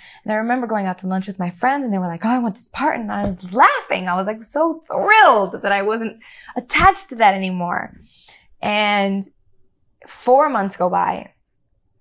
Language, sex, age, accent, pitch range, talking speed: English, female, 20-39, American, 185-230 Hz, 200 wpm